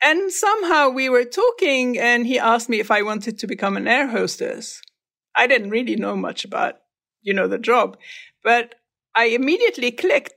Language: English